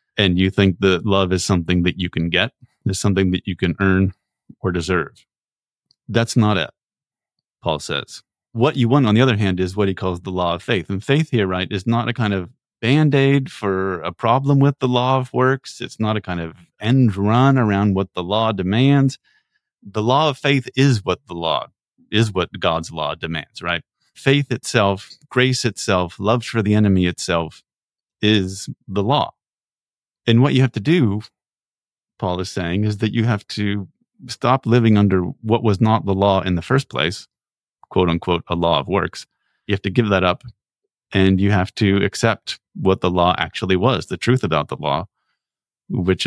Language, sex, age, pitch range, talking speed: English, male, 30-49, 95-125 Hz, 190 wpm